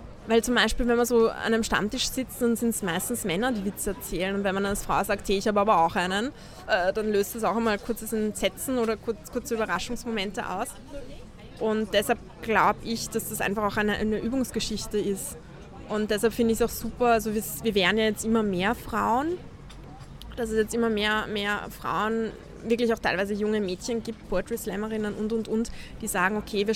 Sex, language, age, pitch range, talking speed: female, German, 20-39, 205-235 Hz, 195 wpm